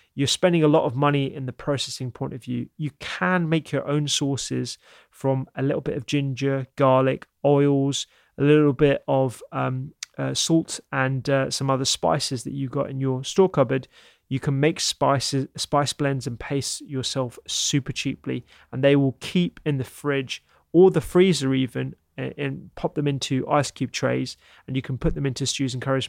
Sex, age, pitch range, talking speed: male, 30-49, 130-145 Hz, 190 wpm